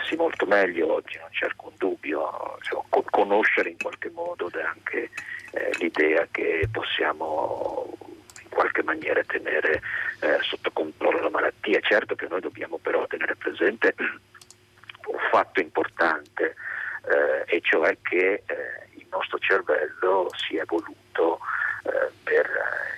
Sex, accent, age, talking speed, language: male, native, 50-69, 130 wpm, Italian